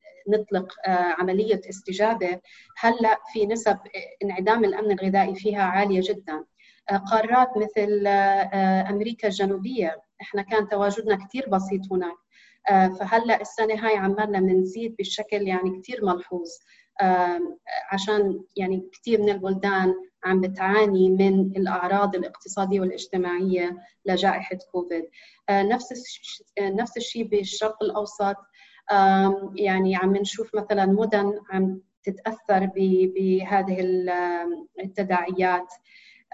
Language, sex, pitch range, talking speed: Arabic, female, 185-215 Hz, 95 wpm